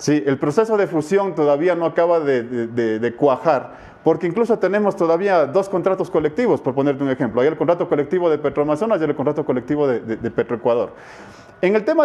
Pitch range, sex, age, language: 140-180 Hz, male, 40-59, English